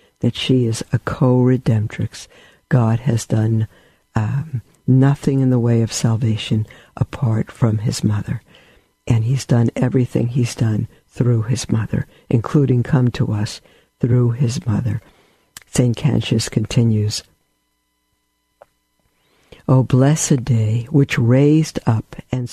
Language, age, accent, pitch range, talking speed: English, 60-79, American, 115-135 Hz, 120 wpm